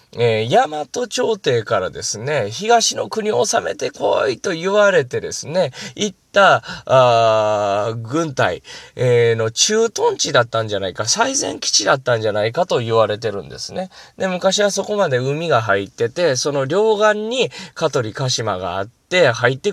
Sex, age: male, 20-39